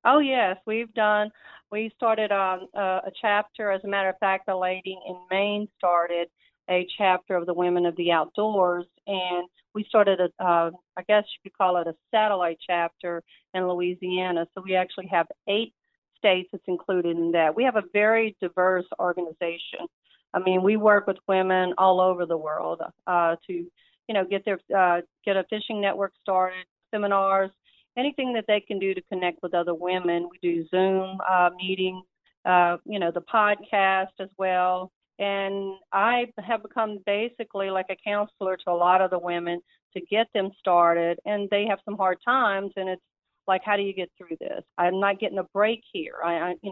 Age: 40-59